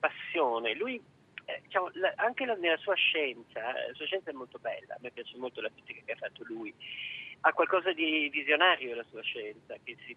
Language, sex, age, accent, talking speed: Italian, male, 40-59, native, 205 wpm